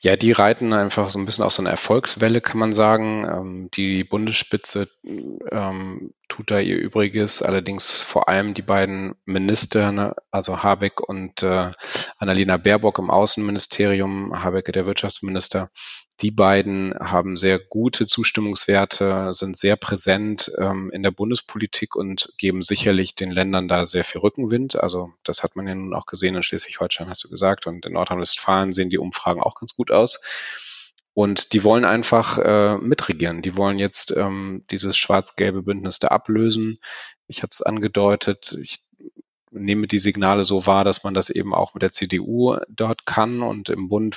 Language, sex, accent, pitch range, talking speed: German, male, German, 95-105 Hz, 160 wpm